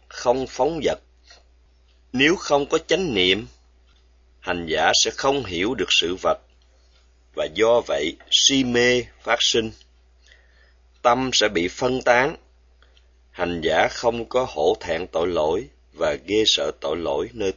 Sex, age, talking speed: male, 20-39, 145 wpm